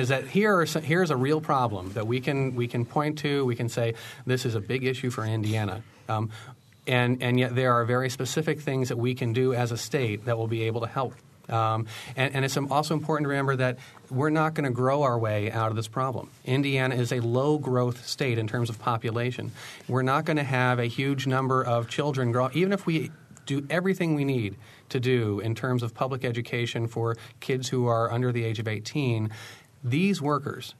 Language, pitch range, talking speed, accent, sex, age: English, 115-135 Hz, 220 wpm, American, male, 30-49